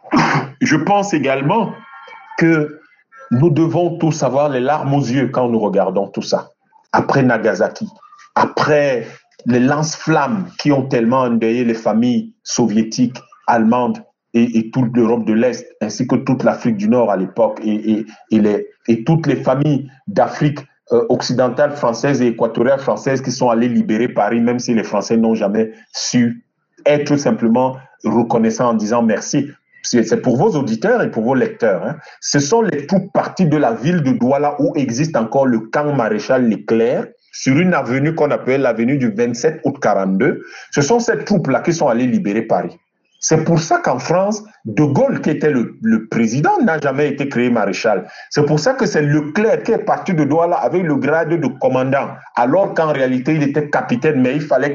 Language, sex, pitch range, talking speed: French, male, 120-175 Hz, 175 wpm